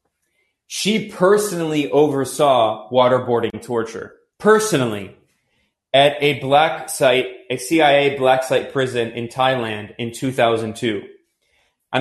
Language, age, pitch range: English, 20-39, 115-150 Hz